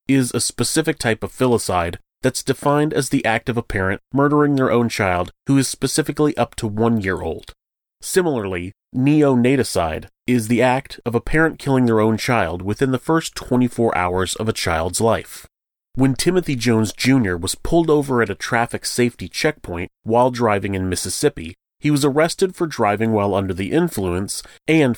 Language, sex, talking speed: English, male, 175 wpm